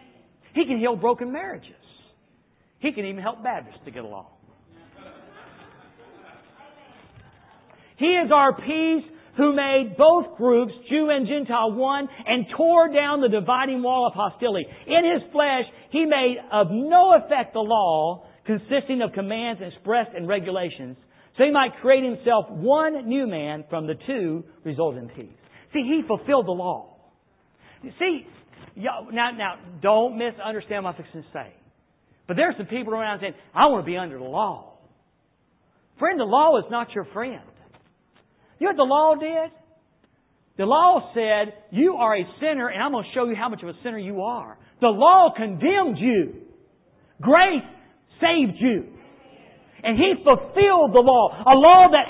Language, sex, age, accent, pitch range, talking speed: English, male, 50-69, American, 215-315 Hz, 160 wpm